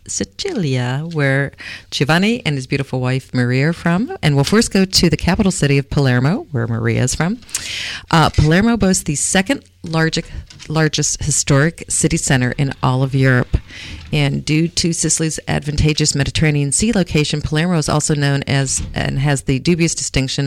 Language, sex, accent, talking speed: English, female, American, 160 wpm